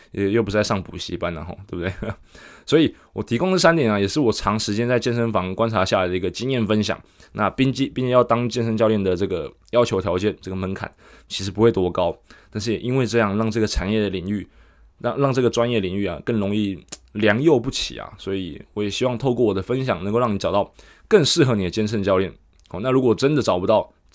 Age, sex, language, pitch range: 20-39, male, Chinese, 95-125 Hz